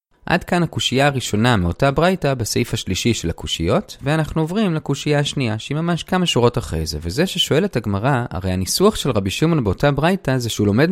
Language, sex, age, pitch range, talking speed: Hebrew, male, 20-39, 110-175 Hz, 180 wpm